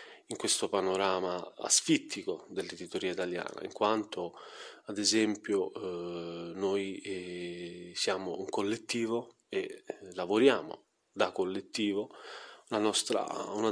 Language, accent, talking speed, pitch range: Italian, native, 95 wpm, 95-115 Hz